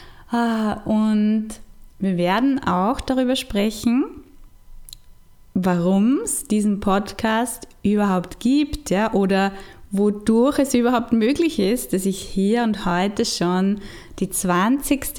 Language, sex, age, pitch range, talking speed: German, female, 20-39, 190-230 Hz, 110 wpm